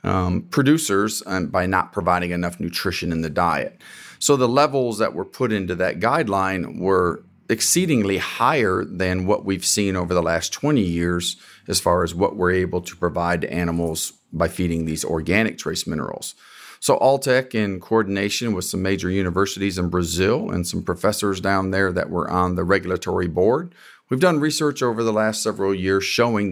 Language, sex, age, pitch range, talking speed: English, male, 40-59, 90-105 Hz, 175 wpm